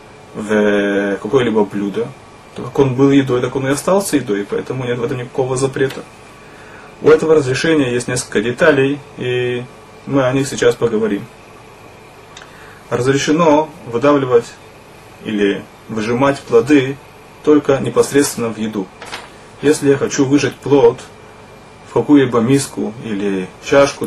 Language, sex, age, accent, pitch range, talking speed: Russian, male, 20-39, native, 115-145 Hz, 120 wpm